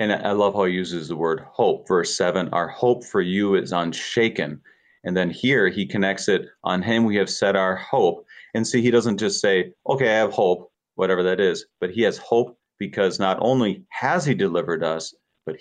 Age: 40-59